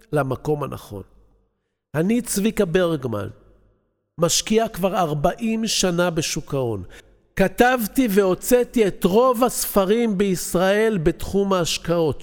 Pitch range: 155-220 Hz